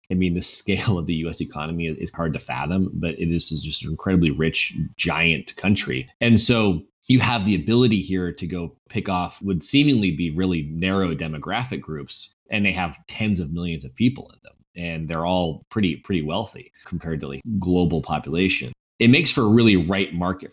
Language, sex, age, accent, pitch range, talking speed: English, male, 30-49, American, 85-105 Hz, 195 wpm